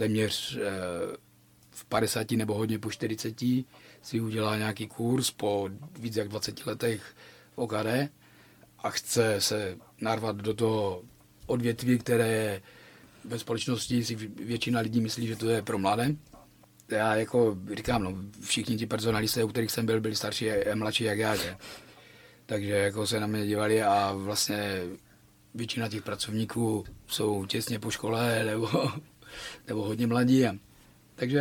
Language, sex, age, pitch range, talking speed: Czech, male, 40-59, 110-120 Hz, 145 wpm